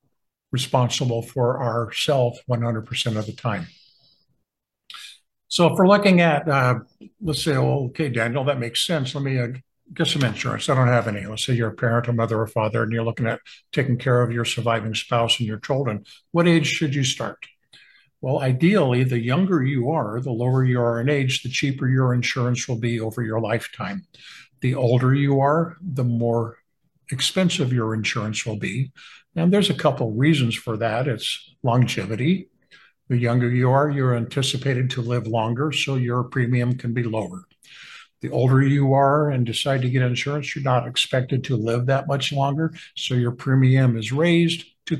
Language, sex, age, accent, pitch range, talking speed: English, male, 60-79, American, 120-145 Hz, 185 wpm